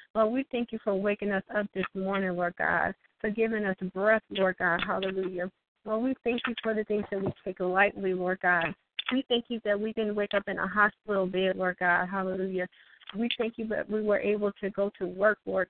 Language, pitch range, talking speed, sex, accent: English, 190-215 Hz, 225 wpm, female, American